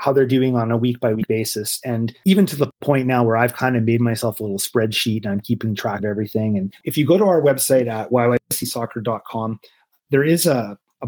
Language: English